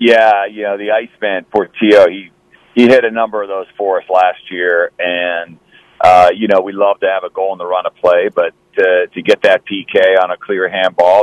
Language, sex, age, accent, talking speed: English, male, 40-59, American, 225 wpm